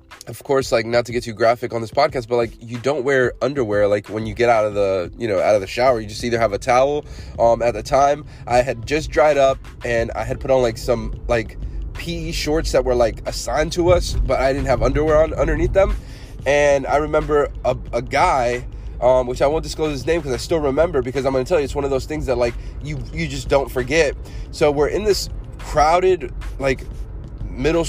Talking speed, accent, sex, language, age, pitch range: 240 wpm, American, male, English, 20-39, 120-155 Hz